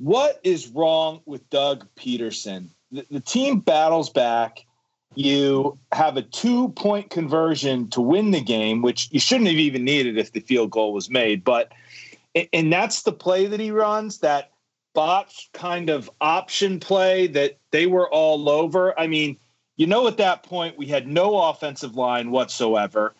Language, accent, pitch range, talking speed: English, American, 125-180 Hz, 170 wpm